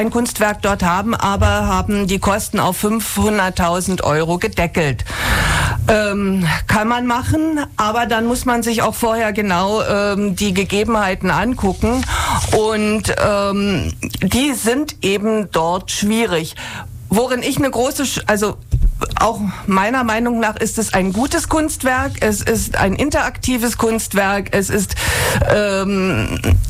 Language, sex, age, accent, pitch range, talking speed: German, female, 50-69, German, 195-245 Hz, 130 wpm